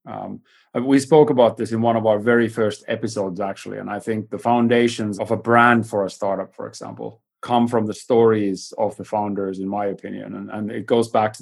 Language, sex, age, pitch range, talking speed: English, male, 30-49, 105-120 Hz, 220 wpm